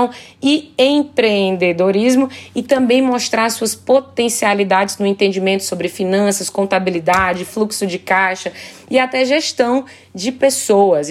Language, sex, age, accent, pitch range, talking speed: Portuguese, female, 20-39, Brazilian, 190-240 Hz, 110 wpm